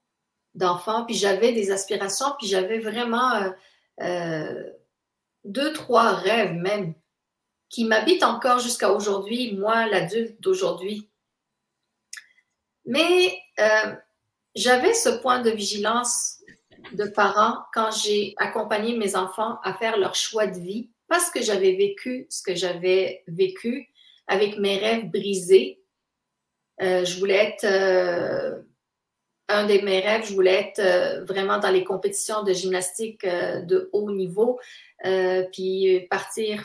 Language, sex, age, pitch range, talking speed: French, female, 40-59, 185-230 Hz, 125 wpm